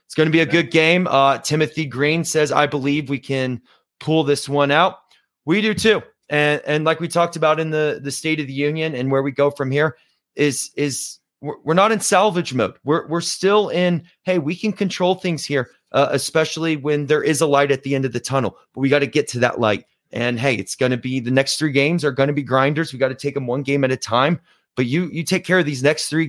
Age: 30-49